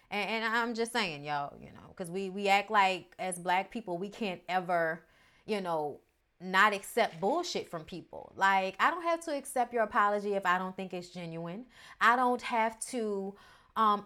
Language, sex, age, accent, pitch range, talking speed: English, female, 30-49, American, 185-235 Hz, 190 wpm